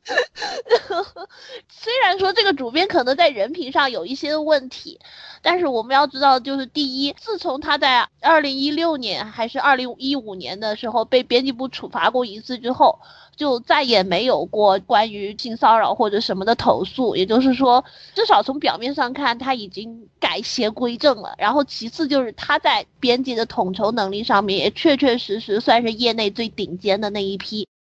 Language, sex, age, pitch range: Chinese, female, 30-49, 215-285 Hz